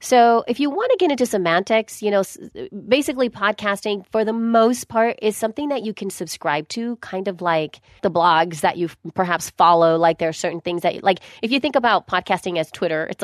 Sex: female